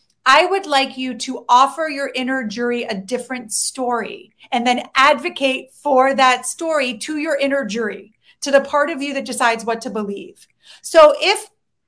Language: English